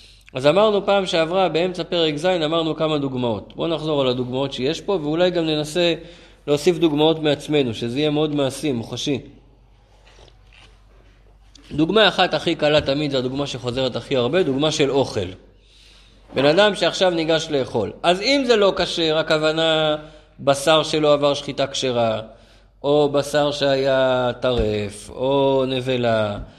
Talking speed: 140 wpm